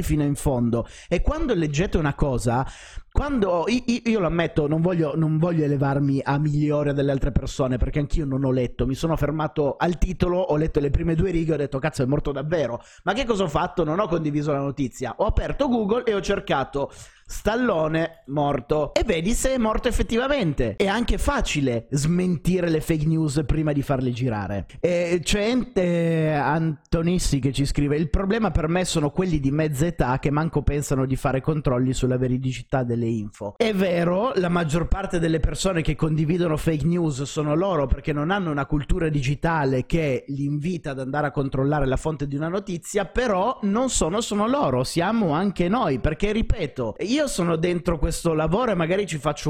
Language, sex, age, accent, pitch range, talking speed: Italian, male, 30-49, native, 140-185 Hz, 190 wpm